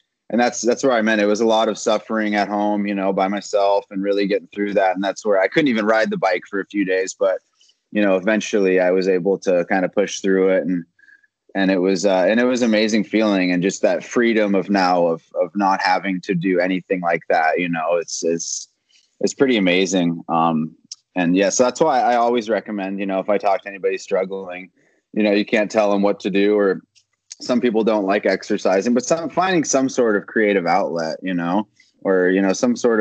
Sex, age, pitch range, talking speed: male, 20-39, 95-110 Hz, 235 wpm